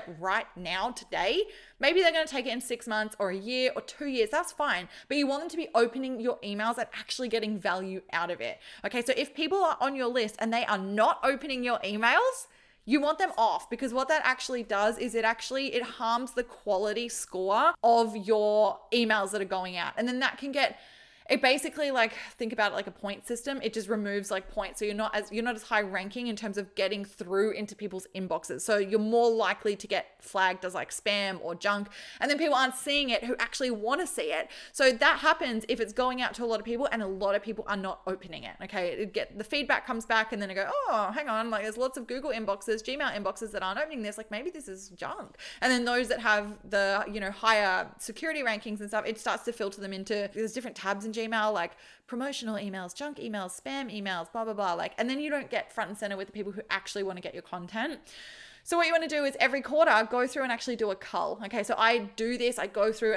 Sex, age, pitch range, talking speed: female, 20-39, 205-255 Hz, 250 wpm